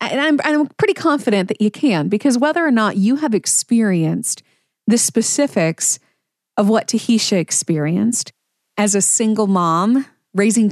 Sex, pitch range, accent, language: female, 190-255 Hz, American, English